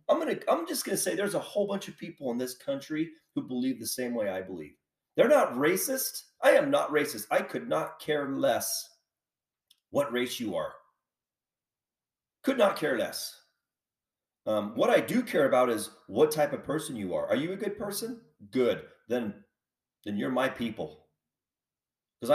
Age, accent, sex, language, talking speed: 30-49, American, male, English, 185 wpm